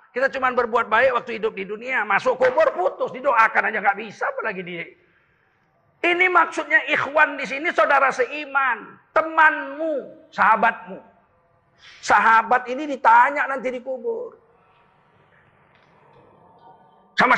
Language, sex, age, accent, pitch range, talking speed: Indonesian, male, 40-59, native, 195-300 Hz, 115 wpm